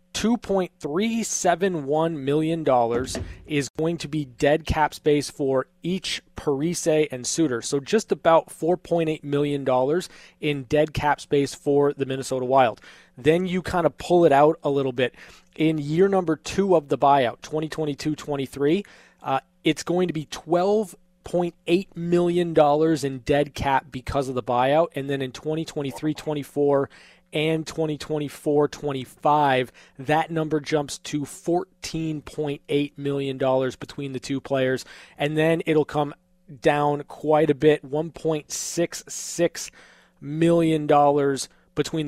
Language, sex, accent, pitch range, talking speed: English, male, American, 140-165 Hz, 120 wpm